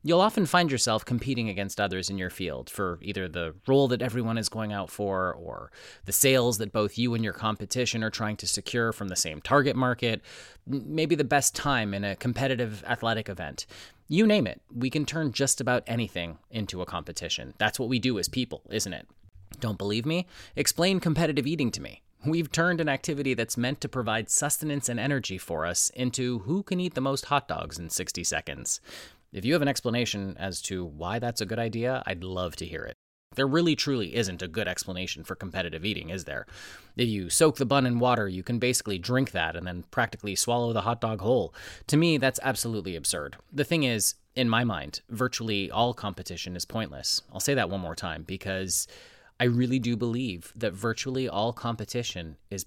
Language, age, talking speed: English, 30-49, 205 wpm